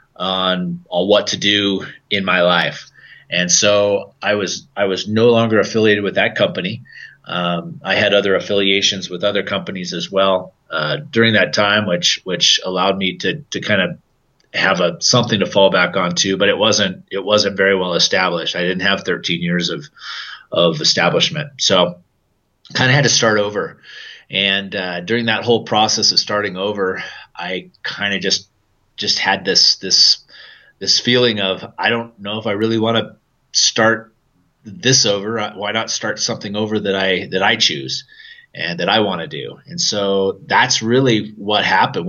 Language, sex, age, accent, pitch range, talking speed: English, male, 30-49, American, 95-110 Hz, 180 wpm